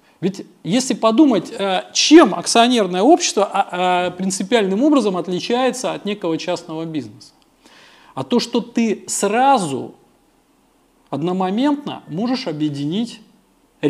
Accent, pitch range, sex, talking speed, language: native, 185-265 Hz, male, 90 wpm, Russian